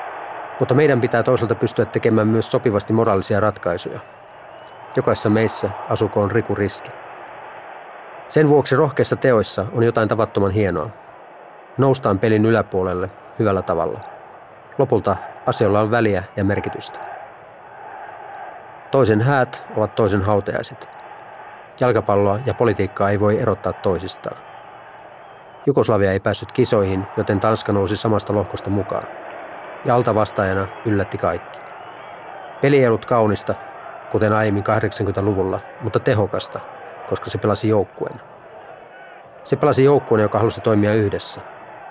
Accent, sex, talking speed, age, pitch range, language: native, male, 115 wpm, 30-49, 100-125 Hz, Finnish